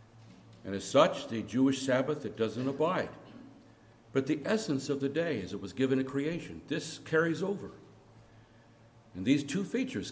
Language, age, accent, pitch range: English, 60-79, American, 115-145 Hz